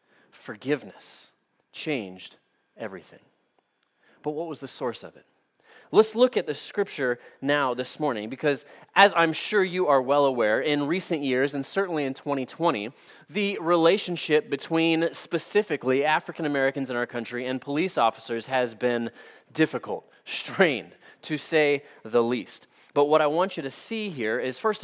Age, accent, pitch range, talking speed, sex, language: 30-49, American, 130-170 Hz, 150 wpm, male, English